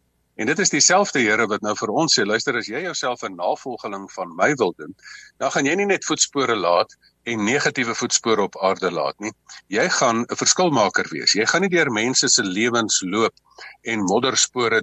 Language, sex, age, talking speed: English, male, 50-69, 195 wpm